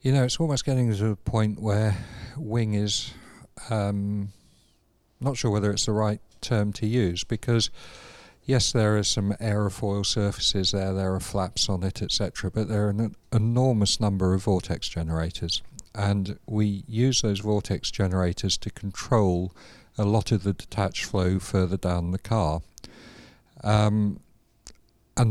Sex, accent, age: male, British, 50-69